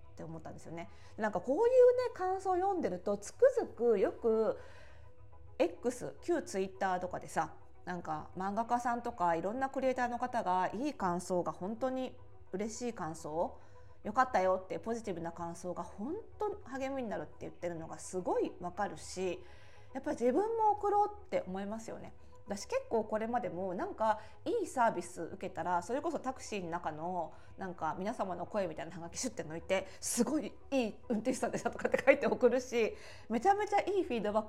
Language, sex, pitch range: Japanese, female, 175-255 Hz